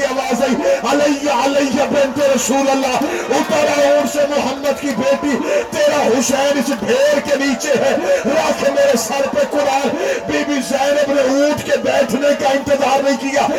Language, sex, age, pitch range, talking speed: Urdu, male, 50-69, 265-285 Hz, 70 wpm